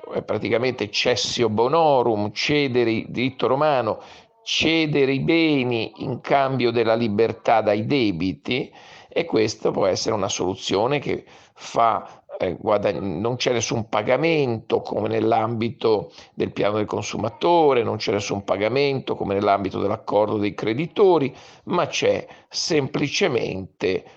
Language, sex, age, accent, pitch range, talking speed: Italian, male, 50-69, native, 110-150 Hz, 120 wpm